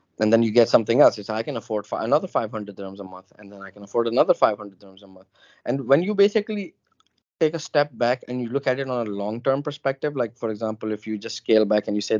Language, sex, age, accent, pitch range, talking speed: English, male, 20-39, Indian, 105-125 Hz, 260 wpm